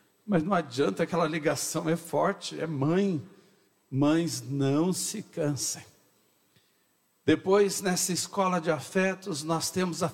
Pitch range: 130-180 Hz